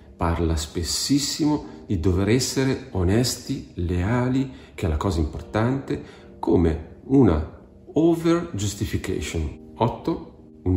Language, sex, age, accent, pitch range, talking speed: Italian, male, 40-59, native, 85-105 Hz, 95 wpm